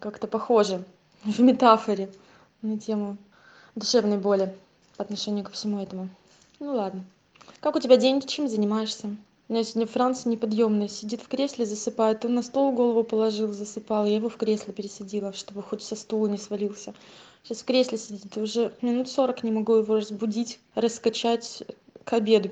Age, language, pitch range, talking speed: 20-39, Russian, 205-235 Hz, 165 wpm